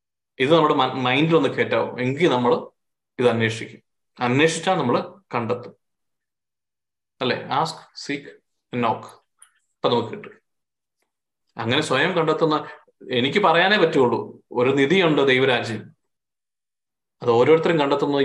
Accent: native